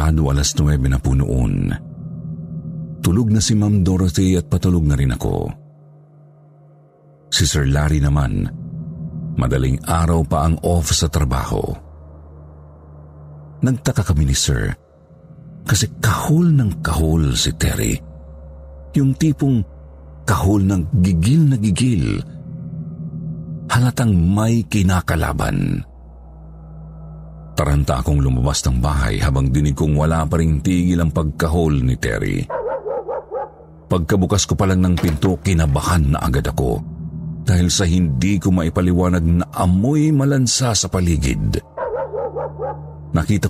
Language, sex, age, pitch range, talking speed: Filipino, male, 50-69, 75-115 Hz, 115 wpm